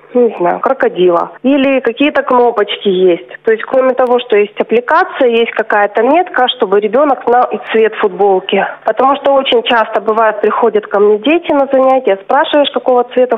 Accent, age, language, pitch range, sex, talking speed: native, 30-49, Russian, 215-260 Hz, female, 160 wpm